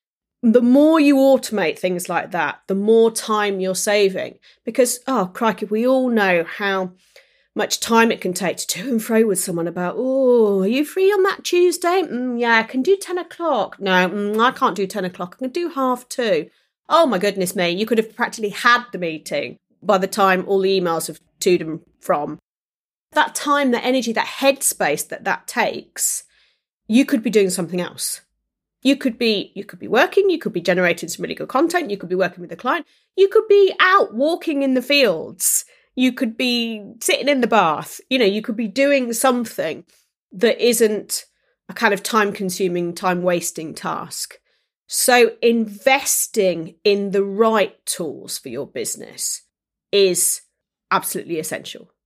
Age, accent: 30-49, British